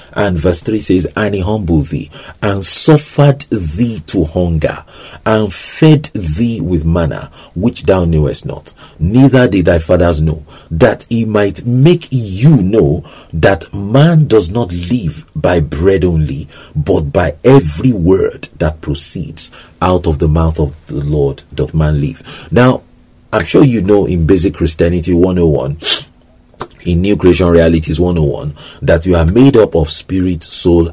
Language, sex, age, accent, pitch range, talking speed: English, male, 40-59, Nigerian, 80-110 Hz, 155 wpm